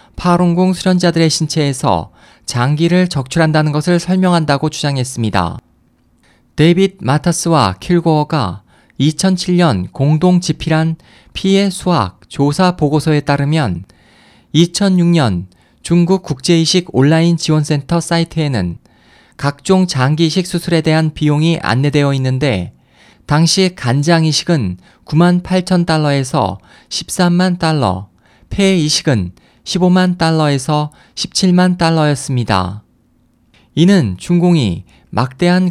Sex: male